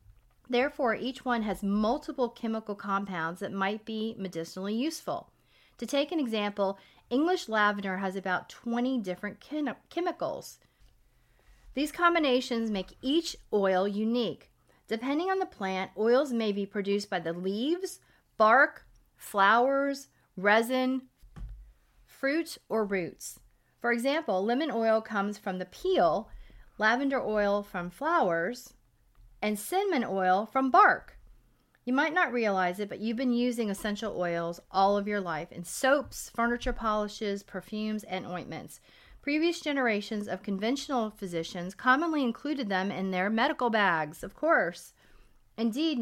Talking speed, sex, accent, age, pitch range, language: 130 wpm, female, American, 40-59, 195-260 Hz, English